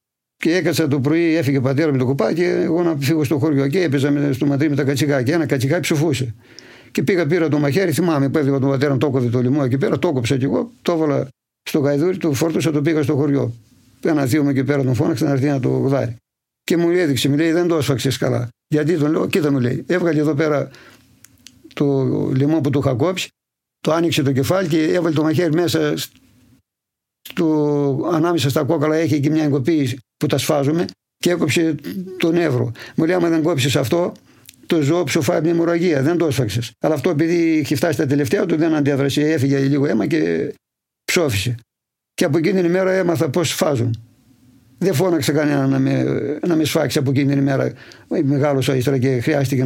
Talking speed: 195 wpm